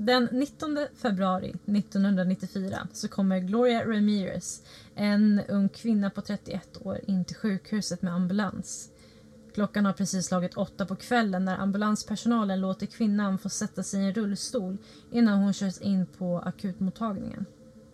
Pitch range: 185-215 Hz